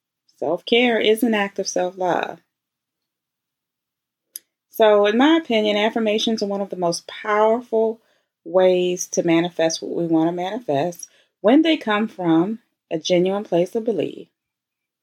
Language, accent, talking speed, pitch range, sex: English, American, 135 wpm, 165-220 Hz, female